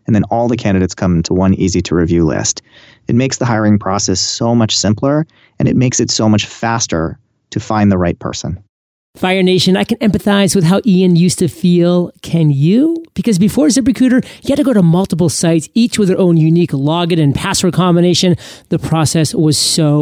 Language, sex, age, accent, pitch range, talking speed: English, male, 30-49, American, 150-185 Hz, 205 wpm